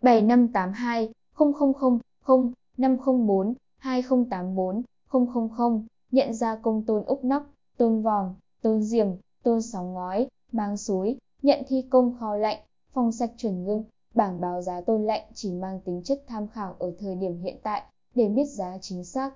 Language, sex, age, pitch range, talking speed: Vietnamese, female, 10-29, 200-235 Hz, 145 wpm